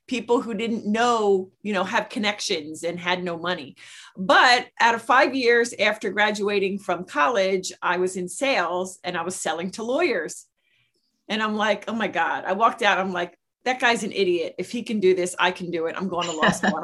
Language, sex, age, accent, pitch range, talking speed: English, female, 40-59, American, 185-255 Hz, 215 wpm